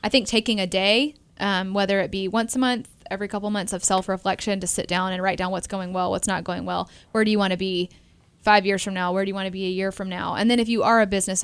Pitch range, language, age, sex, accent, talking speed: 185-205 Hz, English, 10-29, female, American, 300 wpm